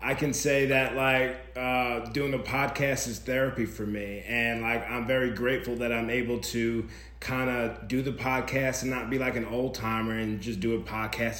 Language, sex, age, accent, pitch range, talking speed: English, male, 30-49, American, 115-130 Hz, 200 wpm